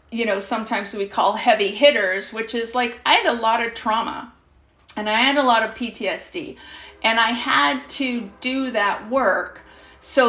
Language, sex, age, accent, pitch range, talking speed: English, female, 40-59, American, 220-275 Hz, 180 wpm